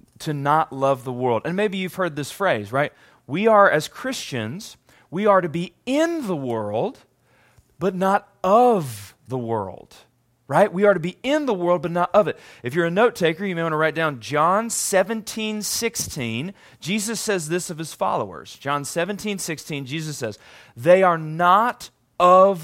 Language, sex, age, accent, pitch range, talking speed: English, male, 30-49, American, 150-200 Hz, 185 wpm